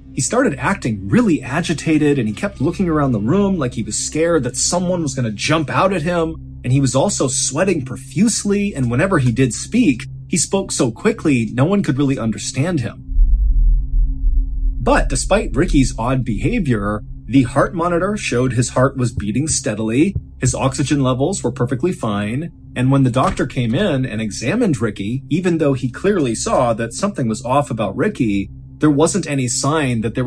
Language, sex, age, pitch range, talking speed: English, male, 30-49, 115-145 Hz, 180 wpm